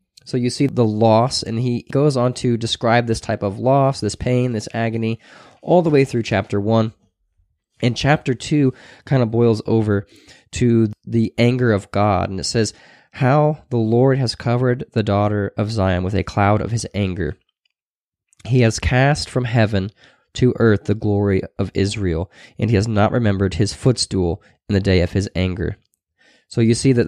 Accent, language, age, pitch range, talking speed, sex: American, English, 20-39, 100-125 Hz, 185 wpm, male